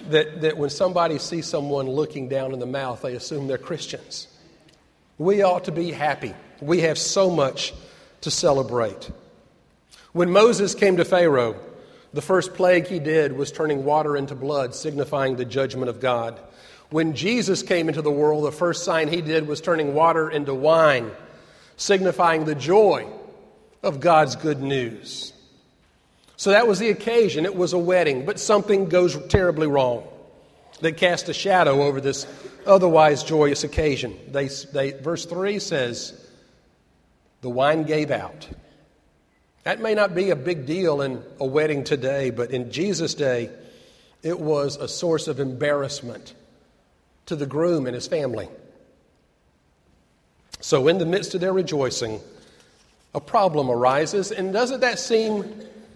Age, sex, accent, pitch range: 50-69, male, American, 140-180 Hz